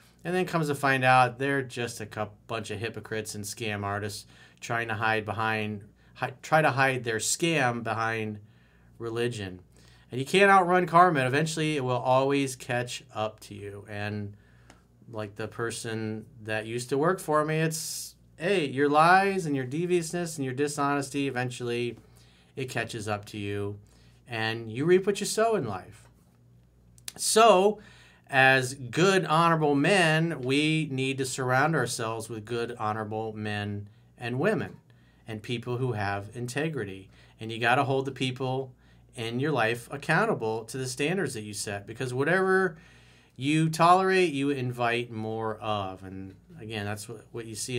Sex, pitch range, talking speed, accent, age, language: male, 105-140 Hz, 160 wpm, American, 40-59, English